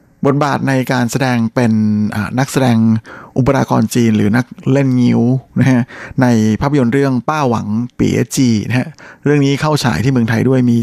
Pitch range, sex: 115-130 Hz, male